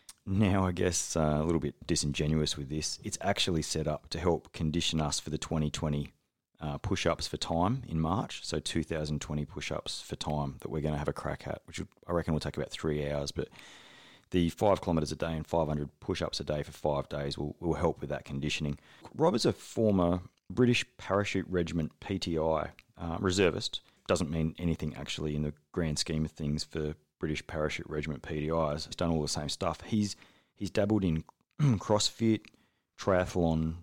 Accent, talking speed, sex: Australian, 185 wpm, male